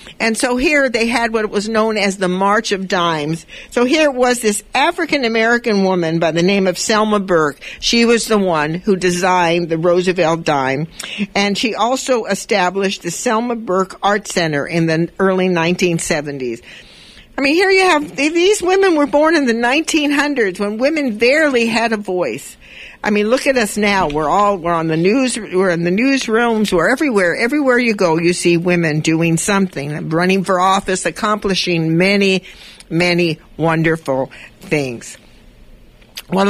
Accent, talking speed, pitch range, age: American, 165 wpm, 160-220 Hz, 60-79